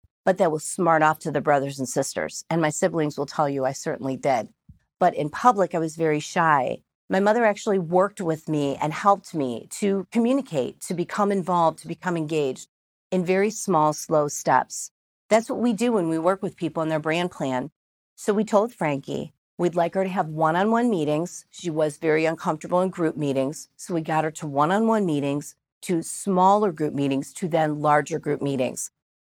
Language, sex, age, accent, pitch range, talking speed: English, female, 40-59, American, 150-190 Hz, 195 wpm